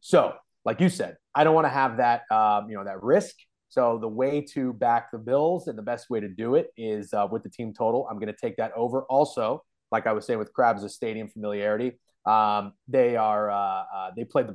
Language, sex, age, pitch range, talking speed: English, male, 30-49, 110-140 Hz, 245 wpm